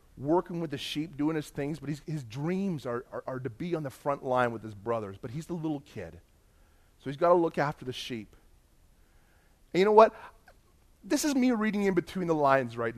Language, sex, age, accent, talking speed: English, male, 30-49, American, 225 wpm